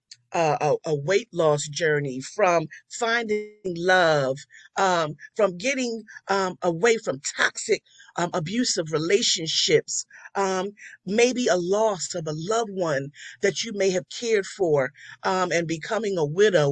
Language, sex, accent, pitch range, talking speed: English, female, American, 160-230 Hz, 135 wpm